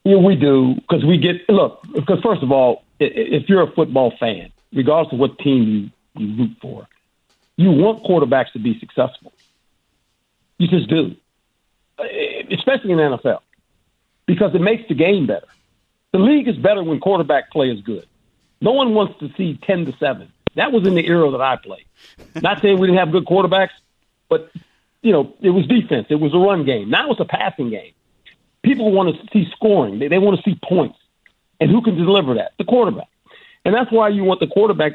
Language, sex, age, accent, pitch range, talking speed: English, male, 50-69, American, 155-210 Hz, 200 wpm